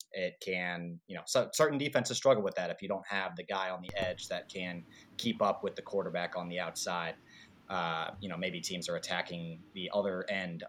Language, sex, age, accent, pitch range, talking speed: English, male, 20-39, American, 95-115 Hz, 215 wpm